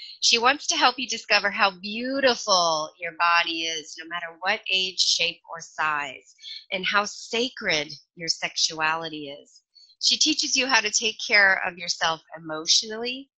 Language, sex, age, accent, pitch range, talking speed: English, female, 30-49, American, 165-215 Hz, 155 wpm